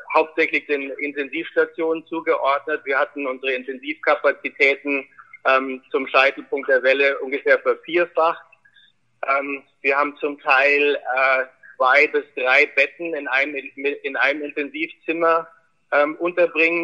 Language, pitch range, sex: German, 130-165 Hz, male